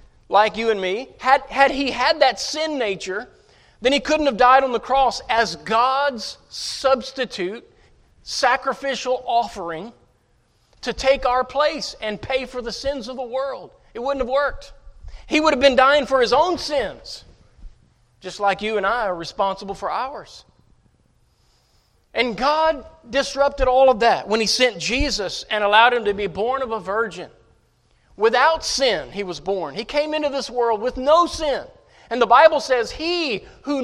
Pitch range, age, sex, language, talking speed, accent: 205-270 Hz, 40-59, male, English, 170 wpm, American